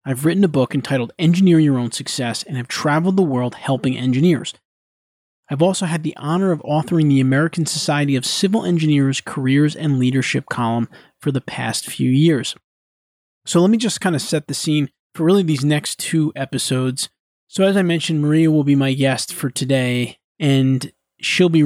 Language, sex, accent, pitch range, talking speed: English, male, American, 130-155 Hz, 185 wpm